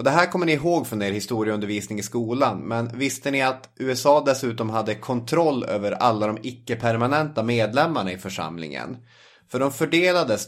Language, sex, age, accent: English, male, 30-49, Swedish